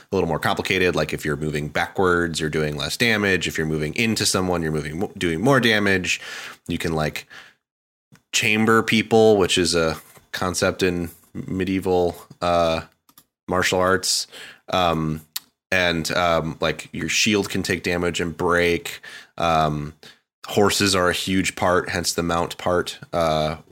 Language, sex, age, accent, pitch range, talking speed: English, male, 20-39, American, 80-95 Hz, 150 wpm